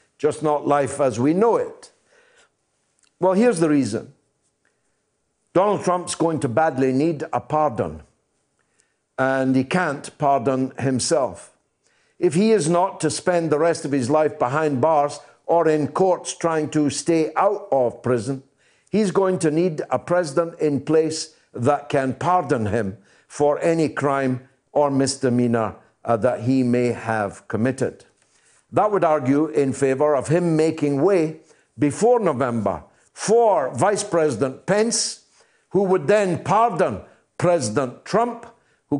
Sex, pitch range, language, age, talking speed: male, 130-175 Hz, English, 60-79, 140 wpm